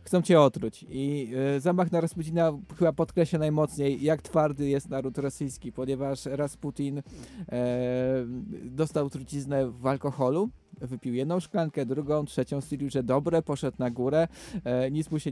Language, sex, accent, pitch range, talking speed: Polish, male, native, 130-155 Hz, 150 wpm